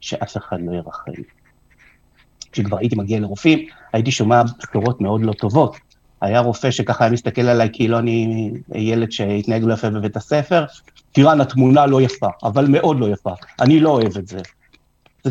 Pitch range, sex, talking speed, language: 105-130 Hz, male, 165 wpm, Hebrew